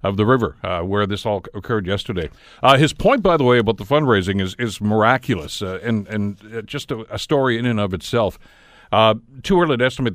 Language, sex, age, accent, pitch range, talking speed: English, male, 60-79, American, 100-120 Hz, 225 wpm